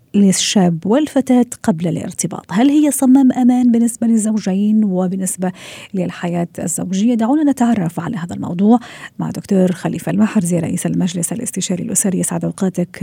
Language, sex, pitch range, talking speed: Arabic, female, 180-215 Hz, 130 wpm